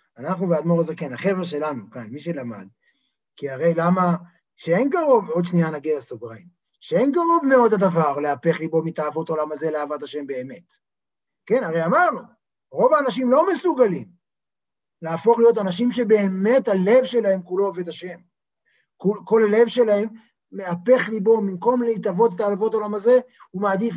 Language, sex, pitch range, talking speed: Hebrew, male, 175-245 Hz, 150 wpm